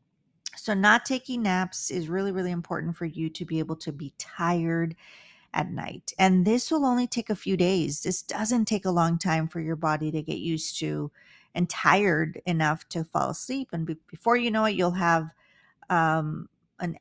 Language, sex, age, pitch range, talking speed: English, female, 40-59, 160-210 Hz, 190 wpm